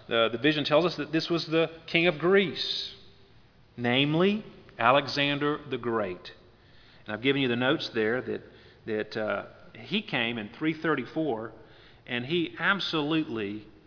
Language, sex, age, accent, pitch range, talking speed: English, male, 40-59, American, 120-160 Hz, 145 wpm